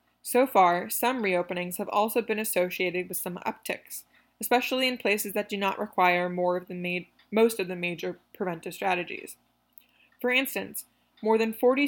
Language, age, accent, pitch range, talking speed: English, 20-39, American, 180-230 Hz, 165 wpm